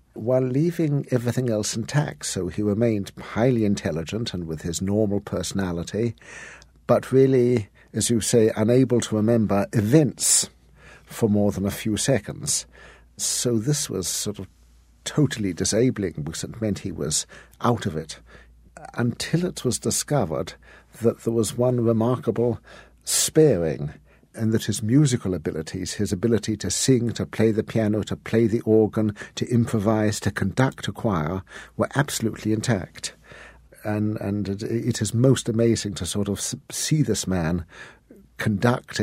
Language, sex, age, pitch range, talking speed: English, male, 60-79, 100-120 Hz, 145 wpm